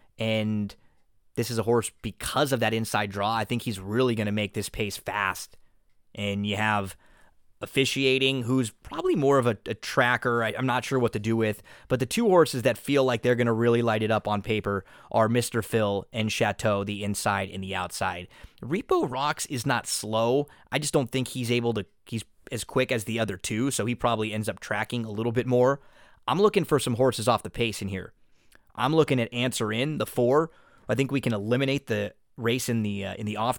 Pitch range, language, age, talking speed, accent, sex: 110-130 Hz, English, 20-39, 220 wpm, American, male